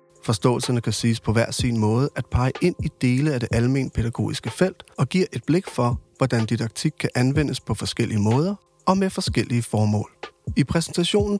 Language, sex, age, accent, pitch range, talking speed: Danish, male, 30-49, native, 120-165 Hz, 185 wpm